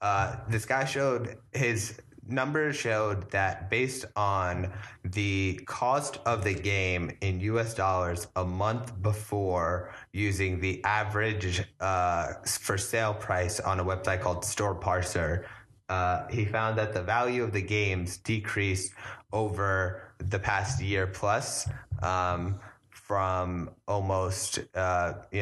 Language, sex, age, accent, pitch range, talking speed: English, male, 20-39, American, 90-105 Hz, 125 wpm